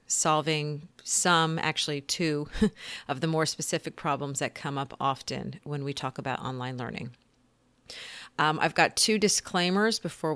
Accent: American